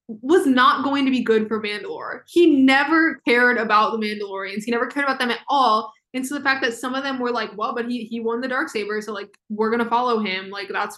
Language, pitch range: English, 215-260 Hz